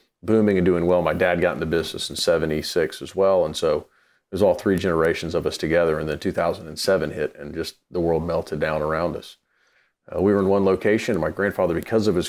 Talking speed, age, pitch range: 220 wpm, 40-59, 85-95 Hz